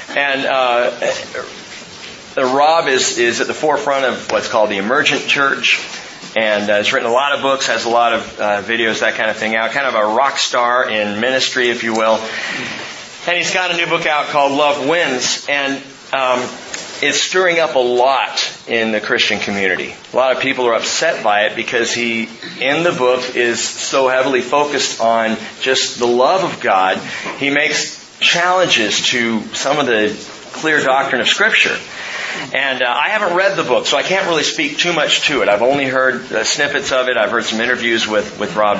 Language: English